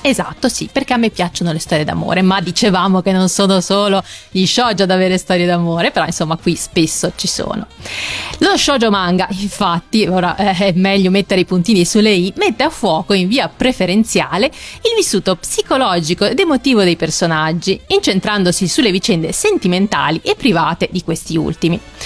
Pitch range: 175-230 Hz